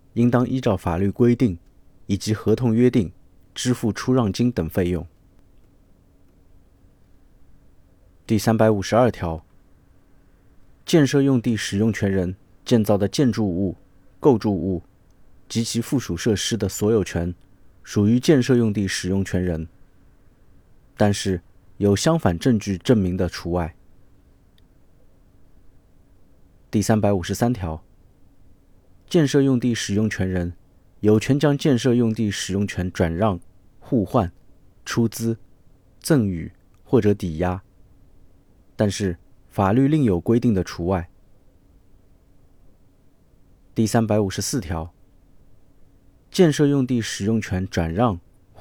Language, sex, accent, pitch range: Chinese, male, native, 90-115 Hz